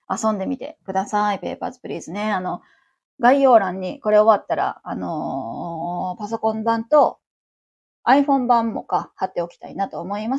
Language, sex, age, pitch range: Japanese, female, 20-39, 205-280 Hz